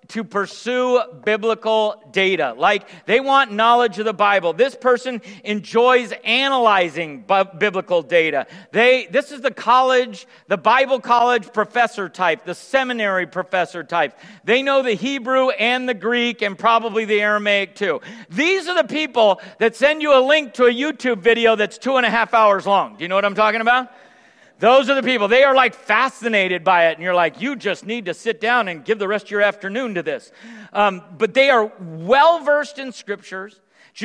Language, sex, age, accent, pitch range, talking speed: English, male, 50-69, American, 195-255 Hz, 185 wpm